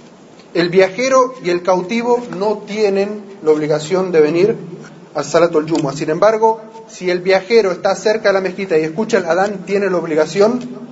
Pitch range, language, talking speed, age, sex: 165-220 Hz, Spanish, 170 wpm, 30-49, male